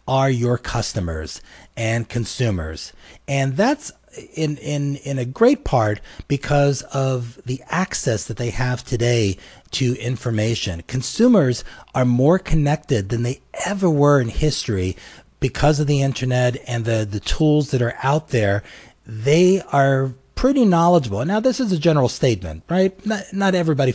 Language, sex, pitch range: English, male, 115-160 Hz